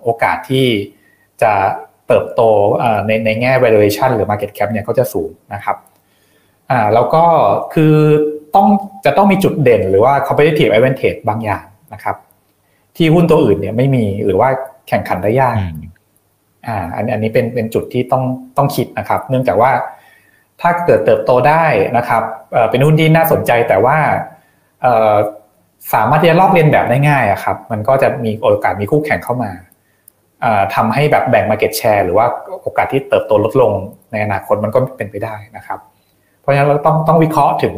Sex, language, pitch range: male, Thai, 105-145 Hz